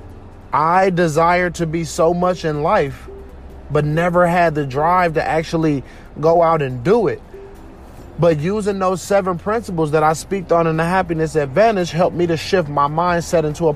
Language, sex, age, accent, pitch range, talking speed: English, male, 30-49, American, 155-220 Hz, 180 wpm